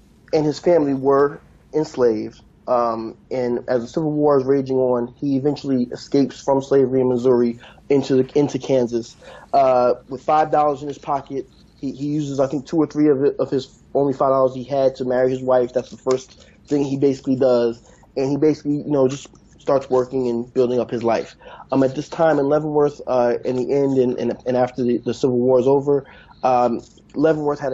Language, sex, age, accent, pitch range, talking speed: English, male, 20-39, American, 125-140 Hz, 210 wpm